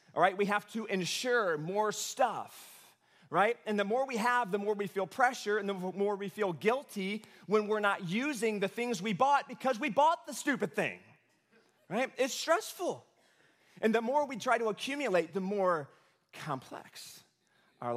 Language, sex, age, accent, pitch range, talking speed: English, male, 30-49, American, 130-205 Hz, 175 wpm